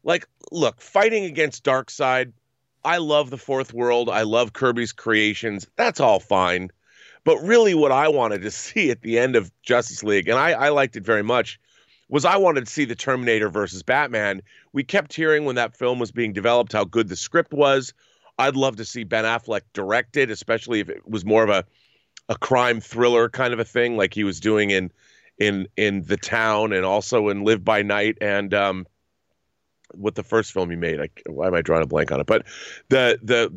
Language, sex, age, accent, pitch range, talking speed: English, male, 30-49, American, 105-145 Hz, 210 wpm